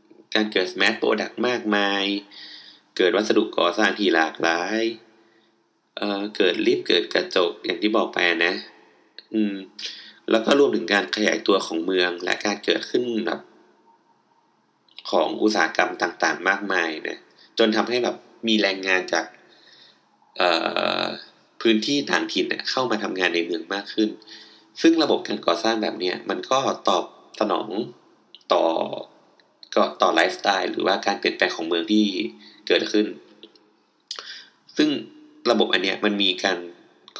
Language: Thai